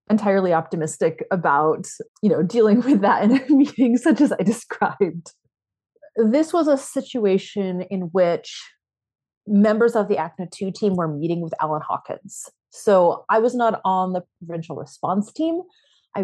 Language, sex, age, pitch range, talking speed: English, female, 30-49, 165-210 Hz, 150 wpm